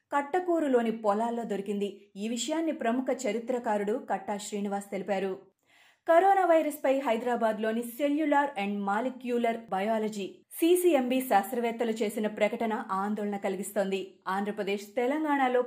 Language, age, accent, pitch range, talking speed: Telugu, 30-49, native, 205-260 Hz, 105 wpm